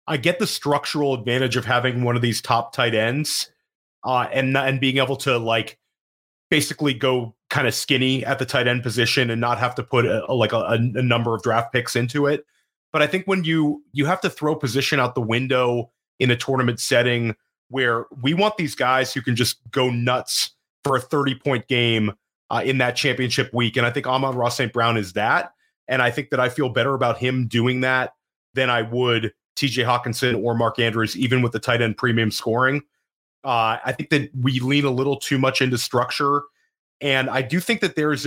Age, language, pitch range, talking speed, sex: 30-49, English, 115-135 Hz, 215 wpm, male